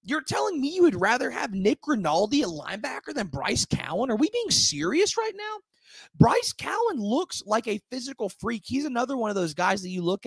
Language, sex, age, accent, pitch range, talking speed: English, male, 20-39, American, 145-205 Hz, 210 wpm